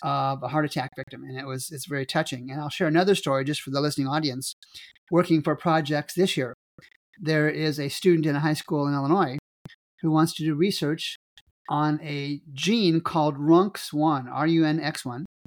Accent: American